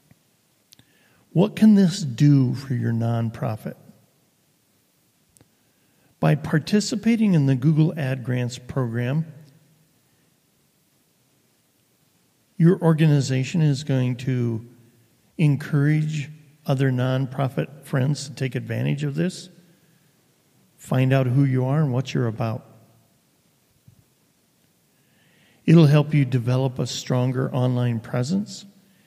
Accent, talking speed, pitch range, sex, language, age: American, 95 wpm, 130-165 Hz, male, English, 50-69